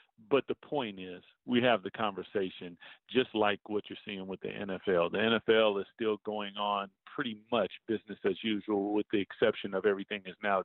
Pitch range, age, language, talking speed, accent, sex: 100-115 Hz, 50-69, English, 190 wpm, American, male